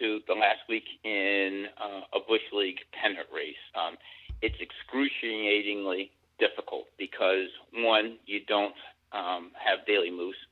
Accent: American